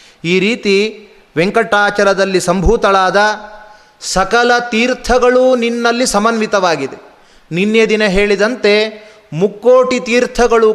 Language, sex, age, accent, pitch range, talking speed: Kannada, male, 30-49, native, 185-220 Hz, 75 wpm